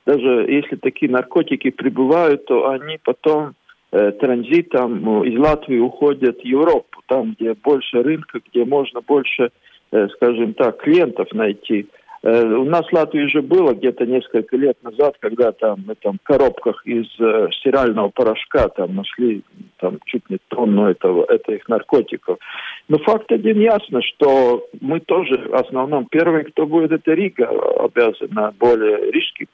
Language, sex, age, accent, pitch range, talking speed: Russian, male, 50-69, native, 120-165 Hz, 150 wpm